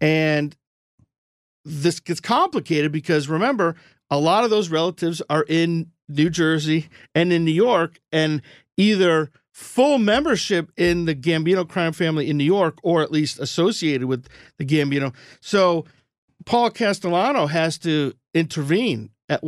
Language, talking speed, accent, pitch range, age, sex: English, 140 wpm, American, 145-180 Hz, 50-69, male